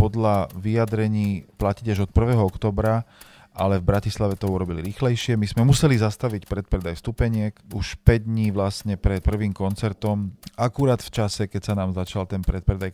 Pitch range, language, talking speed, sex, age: 95-110 Hz, Slovak, 160 wpm, male, 40-59